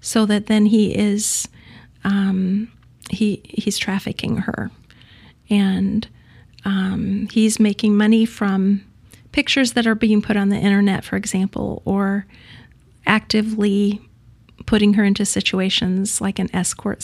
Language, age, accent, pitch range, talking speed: English, 40-59, American, 190-220 Hz, 125 wpm